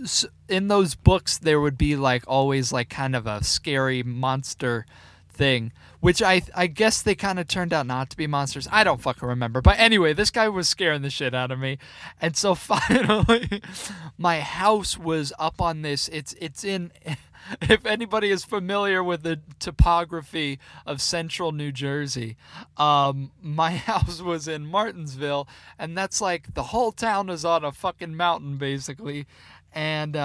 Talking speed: 170 wpm